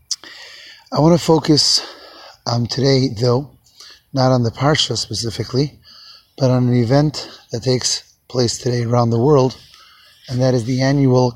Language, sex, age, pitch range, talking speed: English, male, 30-49, 120-140 Hz, 150 wpm